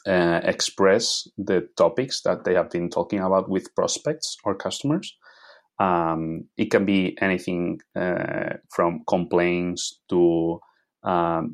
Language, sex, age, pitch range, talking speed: English, male, 30-49, 85-95 Hz, 125 wpm